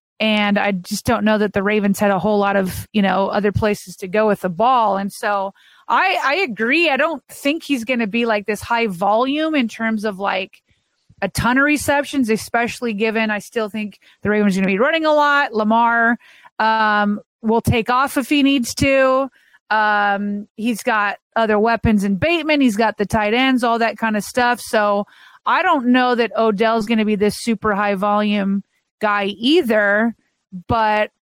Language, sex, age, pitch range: English, female, 30-49, 210-255 Hz